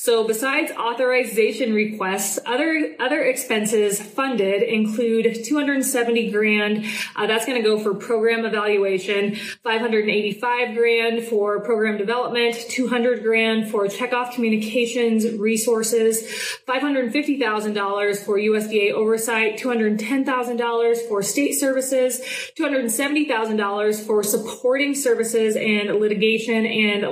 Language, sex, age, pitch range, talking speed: English, female, 20-39, 215-250 Hz, 115 wpm